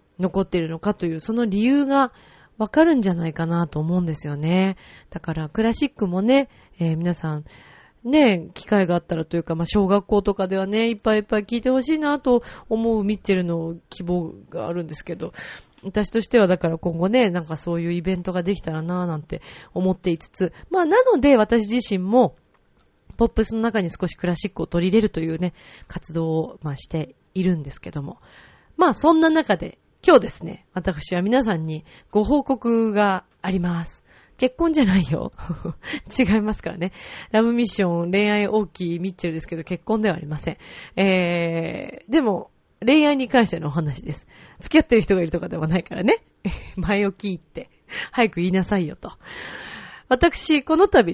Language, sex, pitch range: Japanese, female, 170-240 Hz